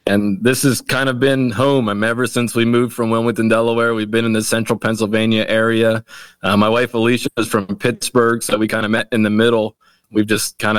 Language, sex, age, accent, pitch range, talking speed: English, male, 20-39, American, 110-125 Hz, 220 wpm